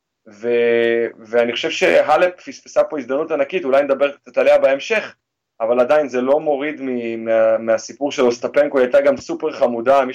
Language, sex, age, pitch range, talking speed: Hebrew, male, 20-39, 120-150 Hz, 170 wpm